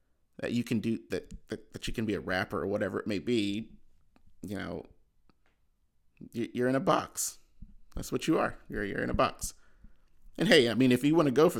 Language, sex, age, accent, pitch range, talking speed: English, male, 30-49, American, 95-120 Hz, 215 wpm